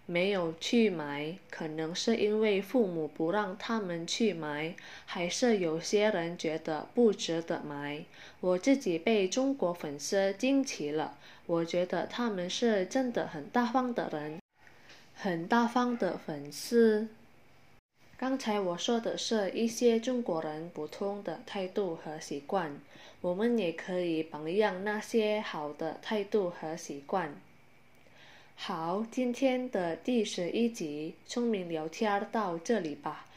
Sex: female